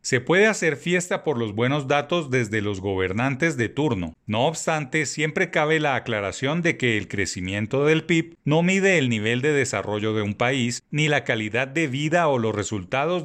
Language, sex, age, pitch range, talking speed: Spanish, male, 40-59, 115-155 Hz, 190 wpm